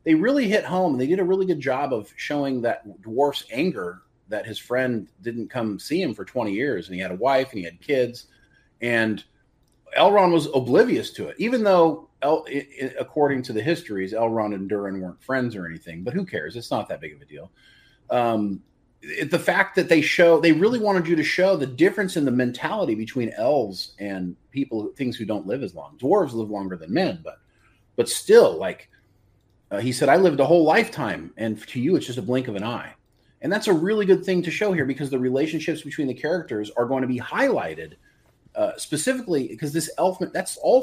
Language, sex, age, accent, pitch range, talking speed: English, male, 30-49, American, 110-165 Hz, 220 wpm